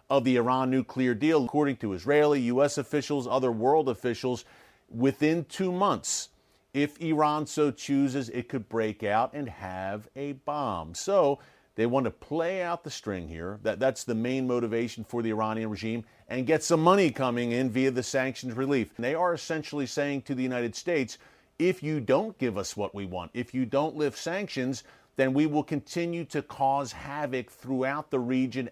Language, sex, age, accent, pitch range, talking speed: English, male, 40-59, American, 120-145 Hz, 185 wpm